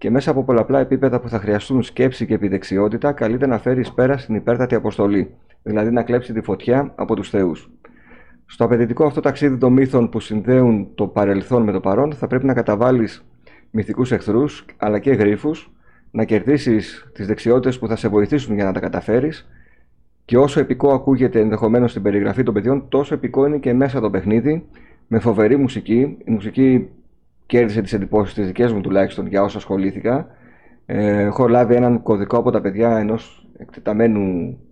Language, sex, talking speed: Greek, male, 175 wpm